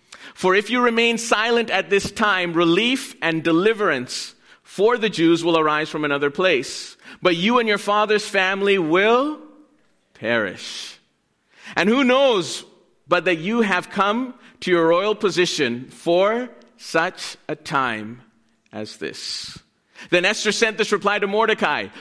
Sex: male